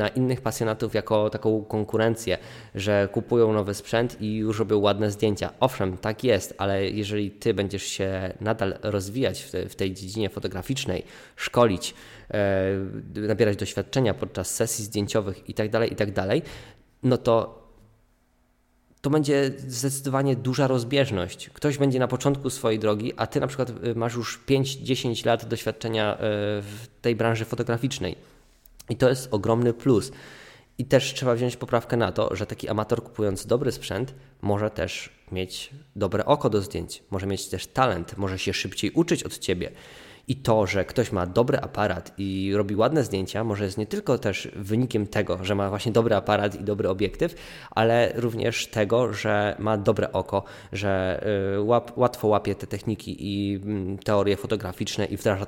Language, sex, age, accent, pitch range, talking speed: Polish, male, 20-39, native, 100-120 Hz, 160 wpm